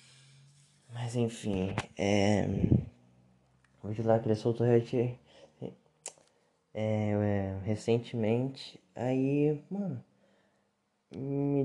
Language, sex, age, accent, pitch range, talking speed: Portuguese, male, 20-39, Brazilian, 105-145 Hz, 60 wpm